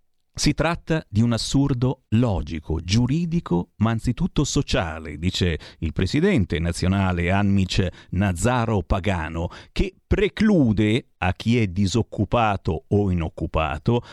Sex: male